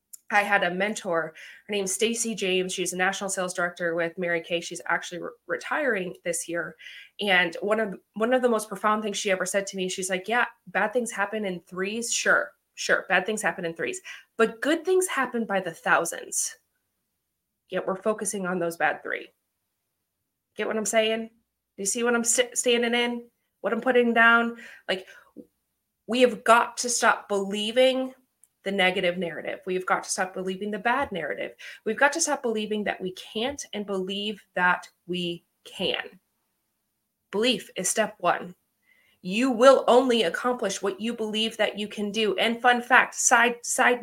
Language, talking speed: English, 180 wpm